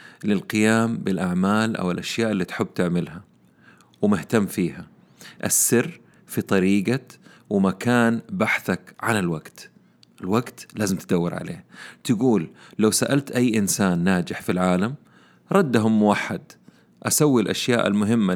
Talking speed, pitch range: 110 wpm, 95-115 Hz